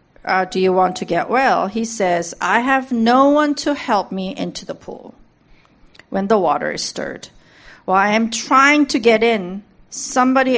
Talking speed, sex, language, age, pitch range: 180 wpm, female, English, 40-59, 190-255 Hz